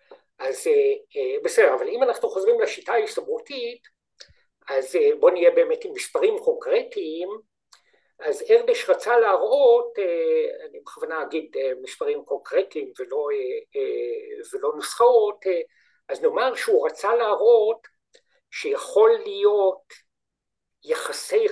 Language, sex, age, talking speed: Hebrew, male, 60-79, 100 wpm